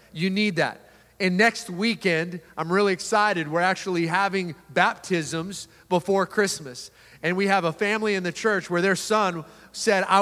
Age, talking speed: 30-49, 165 wpm